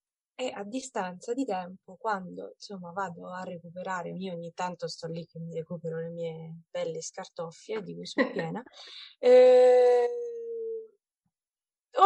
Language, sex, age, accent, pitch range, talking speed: Italian, female, 20-39, native, 200-265 Hz, 130 wpm